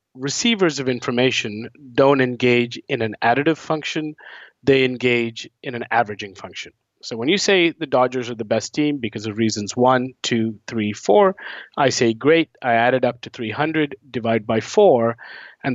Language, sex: English, male